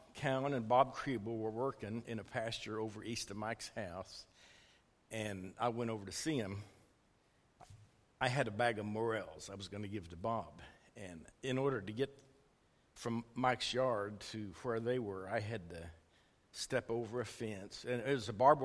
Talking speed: 185 wpm